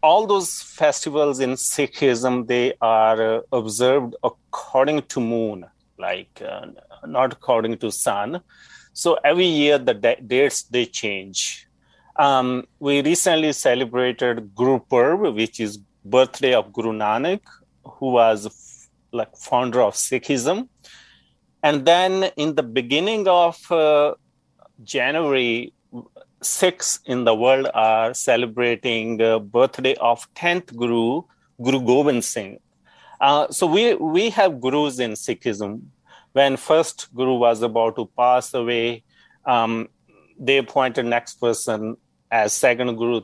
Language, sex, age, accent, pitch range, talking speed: English, male, 30-49, Indian, 120-150 Hz, 125 wpm